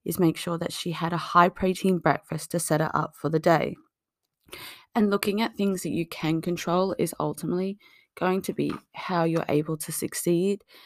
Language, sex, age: English, female, 20-39